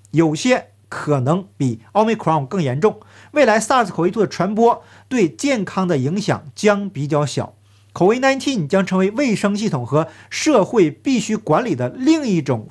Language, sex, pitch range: Chinese, male, 145-220 Hz